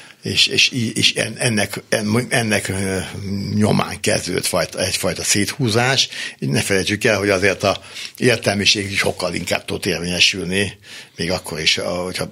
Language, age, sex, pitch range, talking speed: Hungarian, 60-79, male, 90-105 Hz, 125 wpm